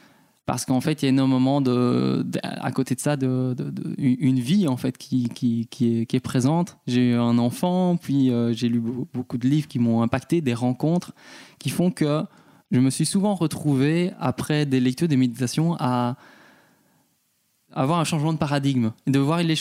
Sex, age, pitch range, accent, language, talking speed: male, 20-39, 130-160 Hz, French, French, 200 wpm